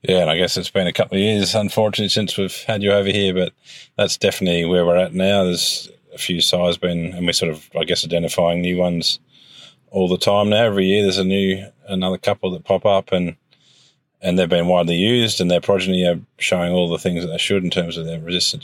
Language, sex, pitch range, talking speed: English, male, 85-100 Hz, 240 wpm